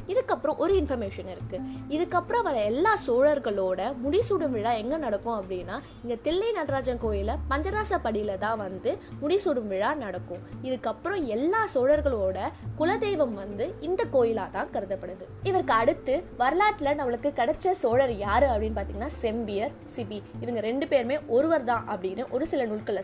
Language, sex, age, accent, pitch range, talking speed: Tamil, female, 20-39, native, 210-300 Hz, 130 wpm